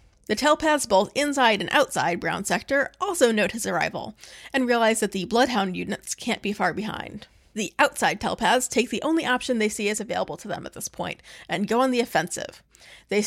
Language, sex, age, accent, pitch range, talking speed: English, female, 30-49, American, 210-280 Hz, 200 wpm